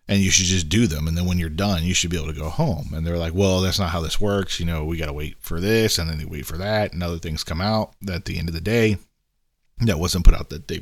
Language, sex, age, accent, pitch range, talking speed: English, male, 40-59, American, 90-120 Hz, 320 wpm